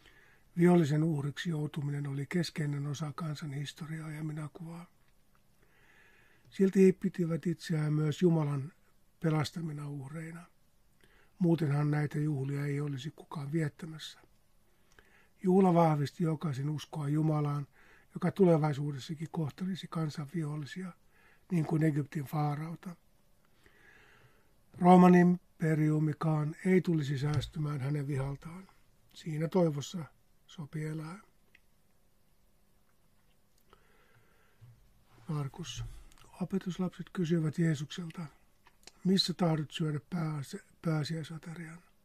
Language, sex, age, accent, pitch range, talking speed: Finnish, male, 60-79, native, 150-170 Hz, 80 wpm